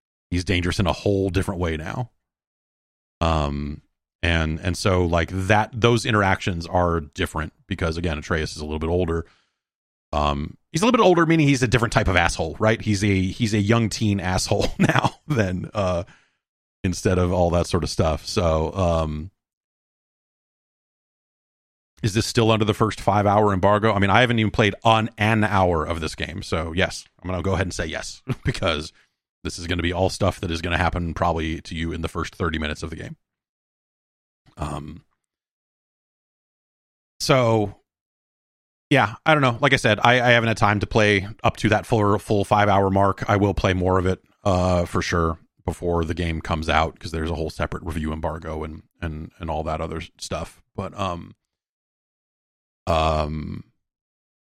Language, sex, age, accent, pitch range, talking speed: English, male, 30-49, American, 80-105 Hz, 185 wpm